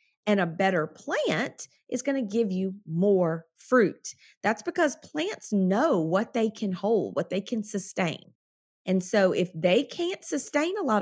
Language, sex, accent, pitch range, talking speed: English, female, American, 180-260 Hz, 170 wpm